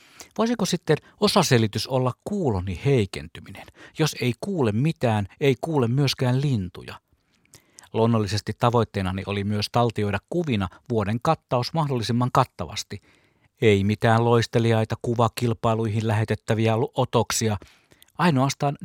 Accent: native